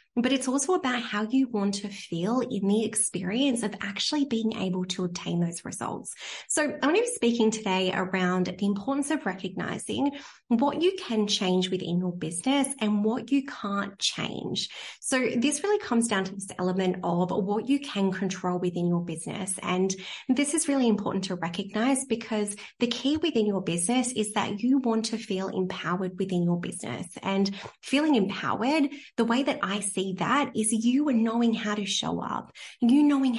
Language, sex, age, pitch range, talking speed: English, female, 20-39, 190-255 Hz, 185 wpm